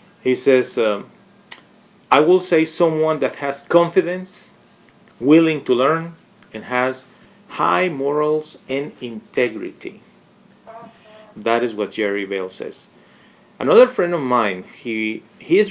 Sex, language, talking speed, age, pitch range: male, English, 120 wpm, 40-59, 120-195 Hz